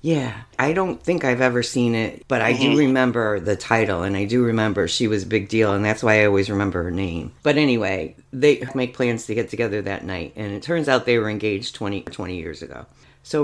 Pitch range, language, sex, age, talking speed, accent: 105-135 Hz, English, female, 50-69, 235 wpm, American